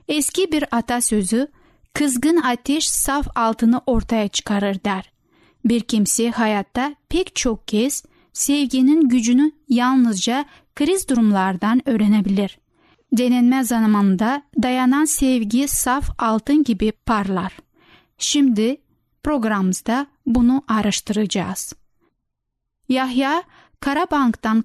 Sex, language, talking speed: female, Turkish, 90 wpm